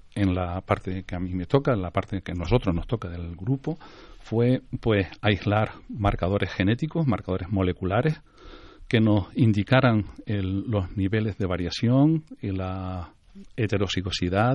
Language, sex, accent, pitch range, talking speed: Spanish, male, Spanish, 95-125 Hz, 150 wpm